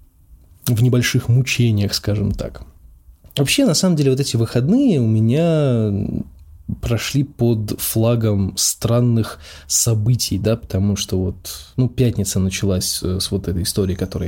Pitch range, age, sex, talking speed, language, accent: 100-120 Hz, 20-39, male, 130 wpm, Russian, native